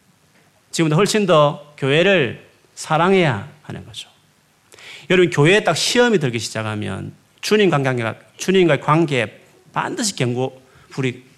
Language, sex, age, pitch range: Korean, male, 40-59, 120-180 Hz